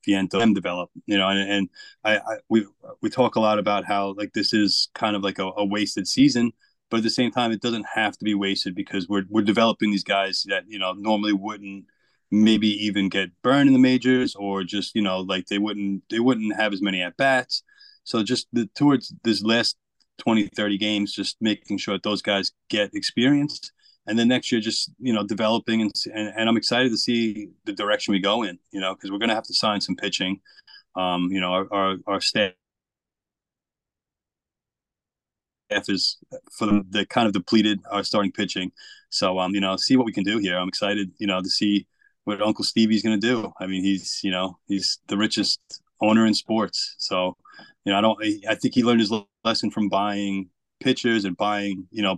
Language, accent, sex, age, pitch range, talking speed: English, American, male, 30-49, 100-115 Hz, 210 wpm